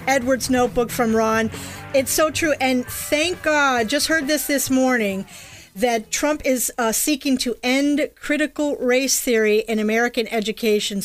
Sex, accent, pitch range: female, American, 220-265 Hz